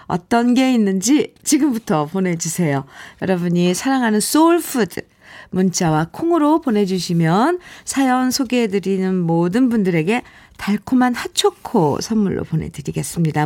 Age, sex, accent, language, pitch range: 50-69, female, native, Korean, 170-265 Hz